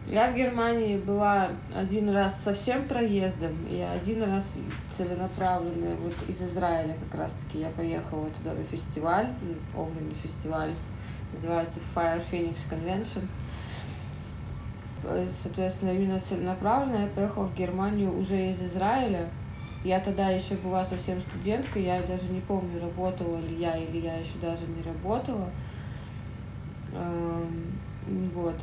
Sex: female